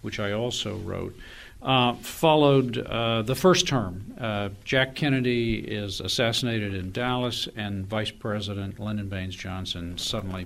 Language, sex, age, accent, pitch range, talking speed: English, male, 50-69, American, 100-125 Hz, 140 wpm